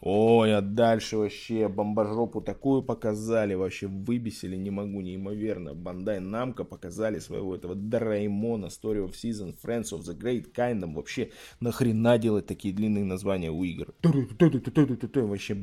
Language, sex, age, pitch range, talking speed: Russian, male, 20-39, 100-120 Hz, 135 wpm